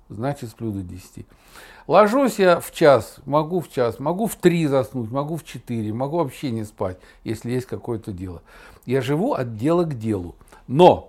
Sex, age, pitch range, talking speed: male, 60-79, 115-165 Hz, 180 wpm